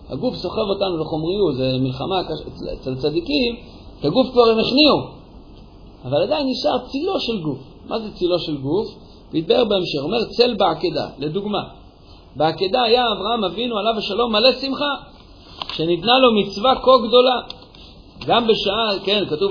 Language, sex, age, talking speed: Hebrew, male, 50-69, 150 wpm